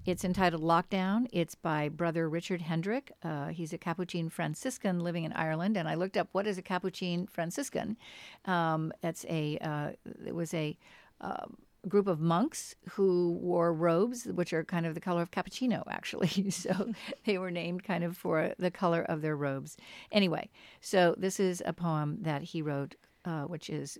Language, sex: English, female